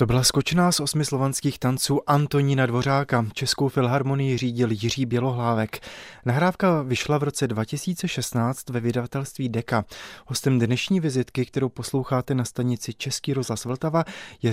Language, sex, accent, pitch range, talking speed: Czech, male, native, 125-140 Hz, 135 wpm